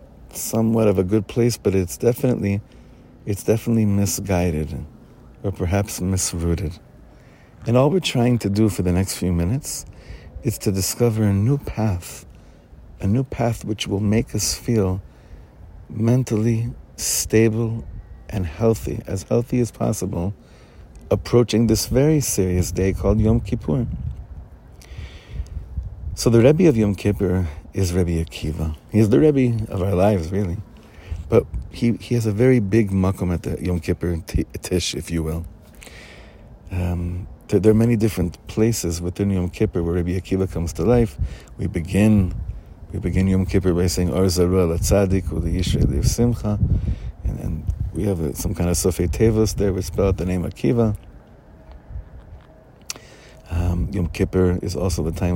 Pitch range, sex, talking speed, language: 85-110 Hz, male, 150 wpm, English